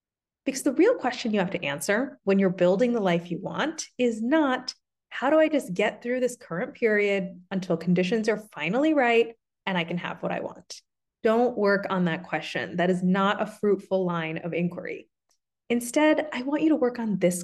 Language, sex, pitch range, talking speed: English, female, 180-270 Hz, 205 wpm